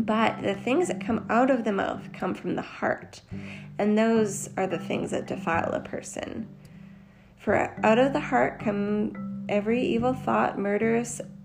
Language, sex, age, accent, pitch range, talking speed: English, female, 20-39, American, 180-225 Hz, 170 wpm